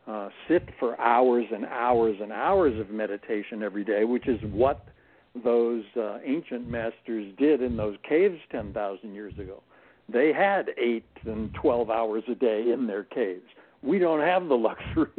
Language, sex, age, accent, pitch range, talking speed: English, male, 60-79, American, 110-130 Hz, 165 wpm